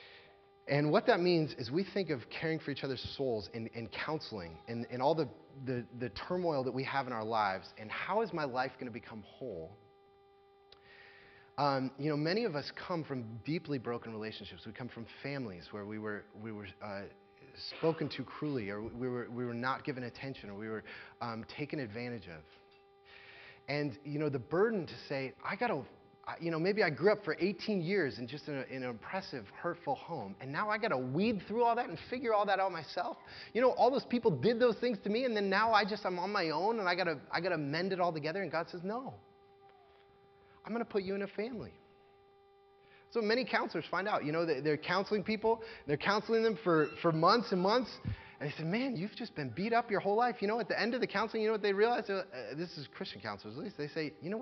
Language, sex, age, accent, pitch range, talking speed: English, male, 30-49, American, 130-220 Hz, 235 wpm